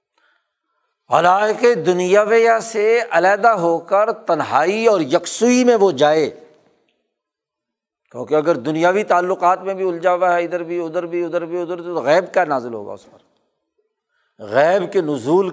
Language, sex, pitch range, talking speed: Urdu, male, 165-215 Hz, 160 wpm